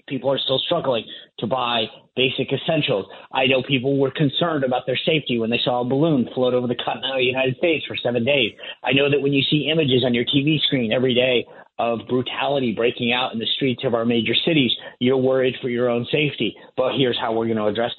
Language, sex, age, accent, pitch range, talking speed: English, male, 40-59, American, 120-150 Hz, 225 wpm